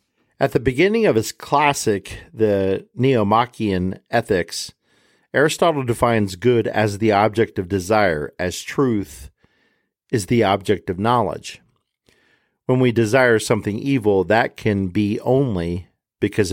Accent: American